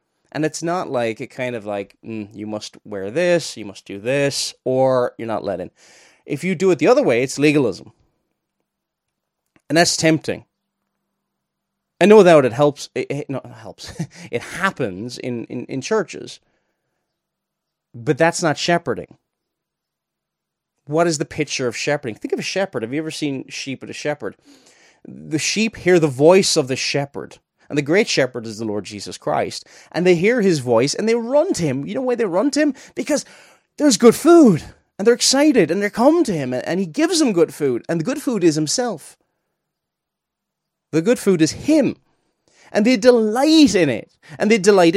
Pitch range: 125-210 Hz